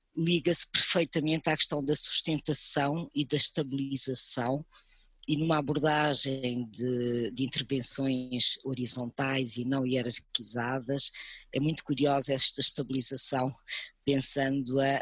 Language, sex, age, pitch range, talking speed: English, female, 20-39, 130-165 Hz, 100 wpm